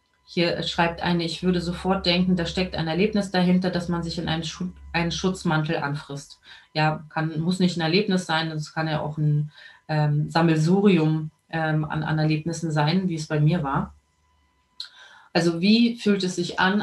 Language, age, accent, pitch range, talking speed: German, 30-49, German, 160-185 Hz, 175 wpm